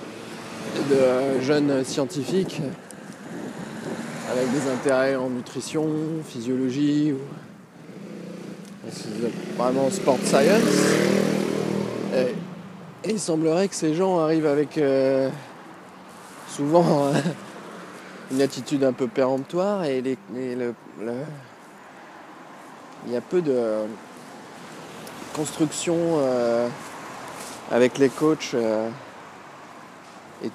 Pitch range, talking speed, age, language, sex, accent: 125-160 Hz, 85 wpm, 20-39, French, male, French